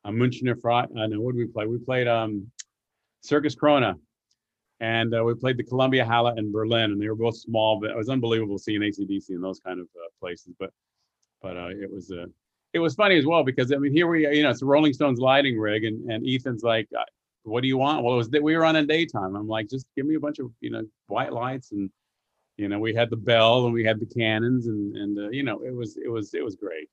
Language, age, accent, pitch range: English, 40-59, American, 110-145 Hz